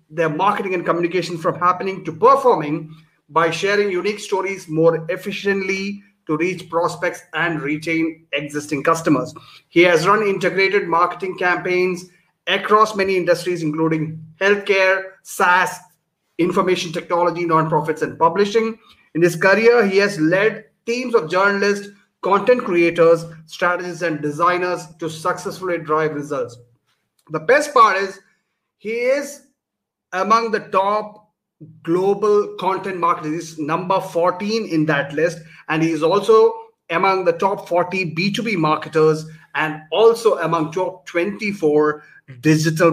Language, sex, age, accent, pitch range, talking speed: English, male, 30-49, Indian, 160-200 Hz, 125 wpm